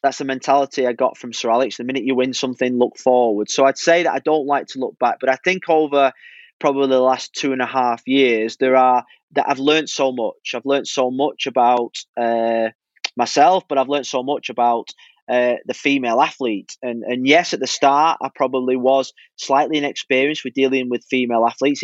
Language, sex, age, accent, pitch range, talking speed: English, male, 20-39, British, 130-150 Hz, 210 wpm